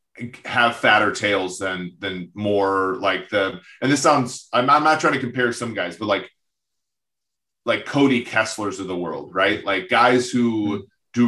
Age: 30-49